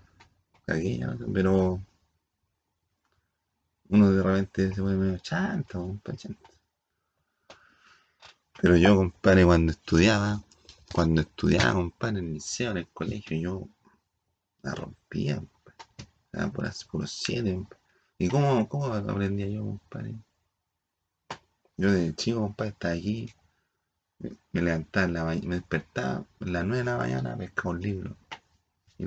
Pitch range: 85-100 Hz